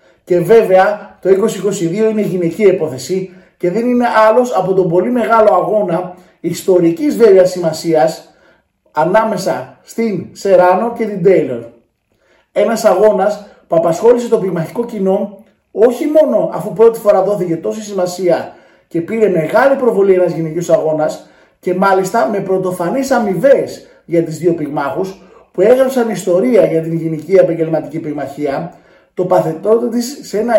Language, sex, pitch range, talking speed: Greek, male, 170-215 Hz, 135 wpm